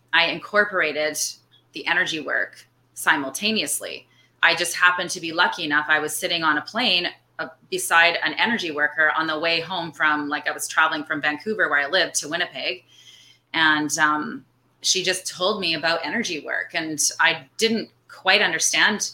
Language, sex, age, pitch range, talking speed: English, female, 30-49, 150-185 Hz, 170 wpm